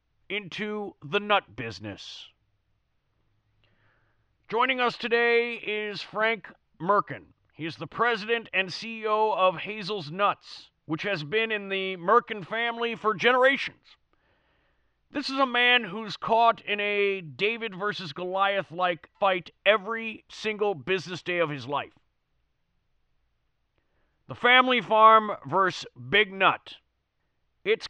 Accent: American